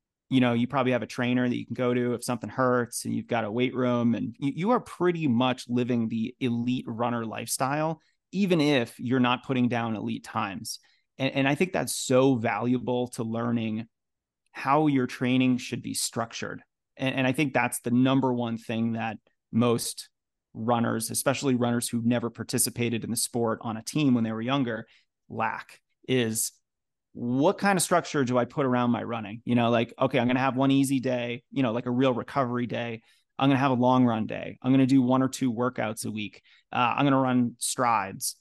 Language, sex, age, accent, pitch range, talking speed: English, male, 30-49, American, 115-130 Hz, 210 wpm